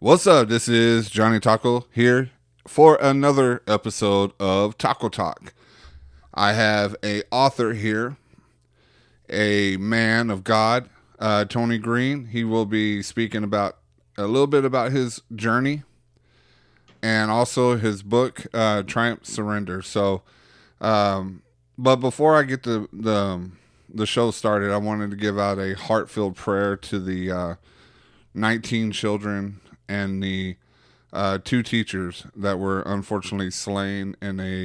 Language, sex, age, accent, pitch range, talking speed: English, male, 30-49, American, 95-110 Hz, 135 wpm